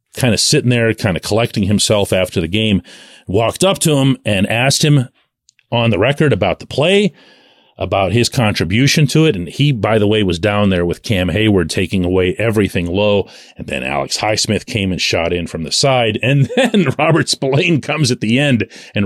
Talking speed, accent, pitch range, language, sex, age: 200 wpm, American, 105-150 Hz, English, male, 40-59